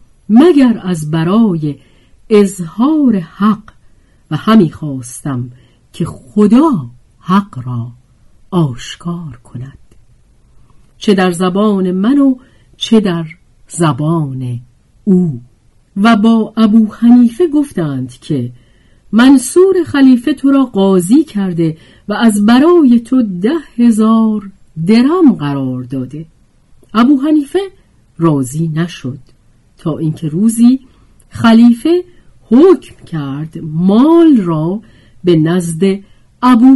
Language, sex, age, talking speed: Persian, female, 50-69, 100 wpm